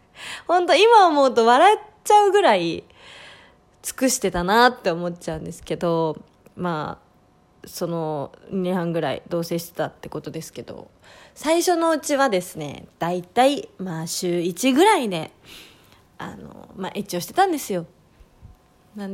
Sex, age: female, 20-39